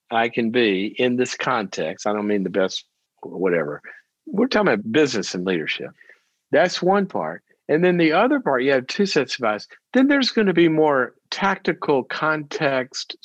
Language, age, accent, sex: English, 50-69, American, male